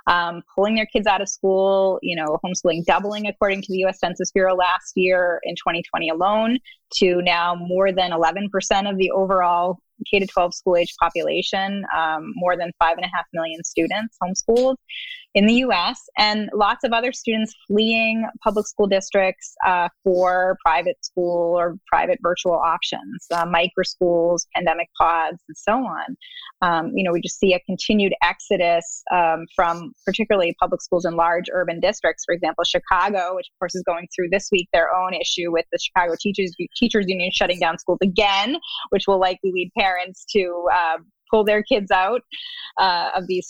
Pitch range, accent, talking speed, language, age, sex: 175-205 Hz, American, 180 wpm, English, 20-39, female